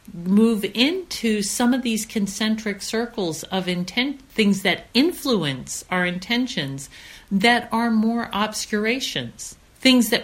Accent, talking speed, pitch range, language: American, 115 wpm, 160-225 Hz, English